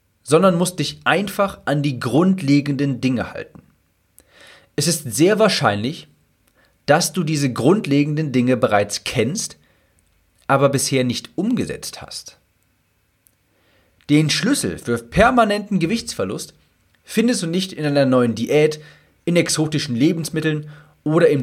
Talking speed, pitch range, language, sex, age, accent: 120 wpm, 105-165 Hz, German, male, 40-59, German